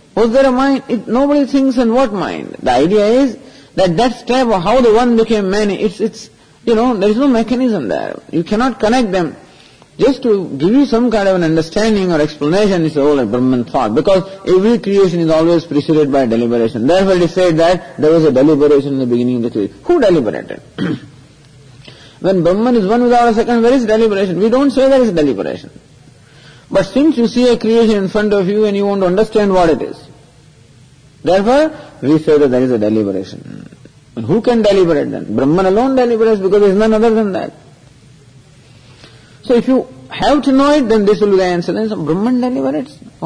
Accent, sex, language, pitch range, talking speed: Indian, male, English, 145-225 Hz, 210 wpm